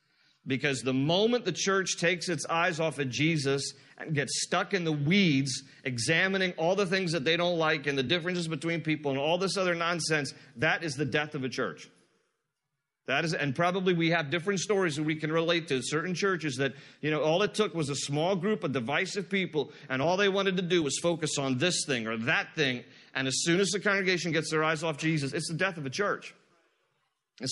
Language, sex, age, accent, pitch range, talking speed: English, male, 40-59, American, 145-185 Hz, 220 wpm